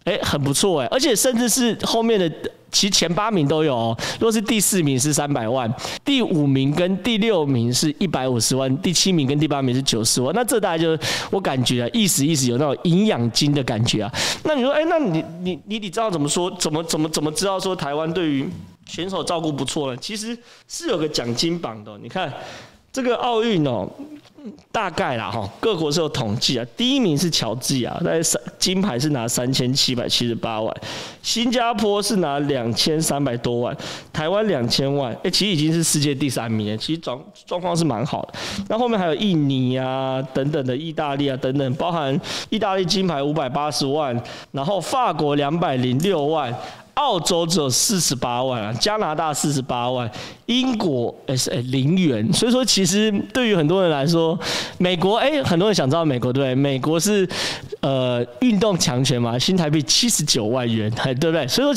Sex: male